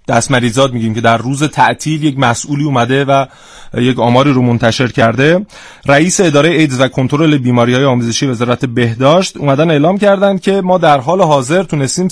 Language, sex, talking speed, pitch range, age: Persian, male, 165 wpm, 120-140 Hz, 30-49